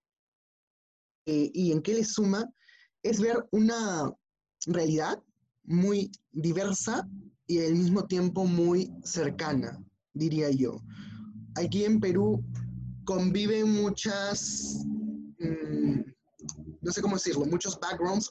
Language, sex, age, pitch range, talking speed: Spanish, male, 20-39, 150-200 Hz, 105 wpm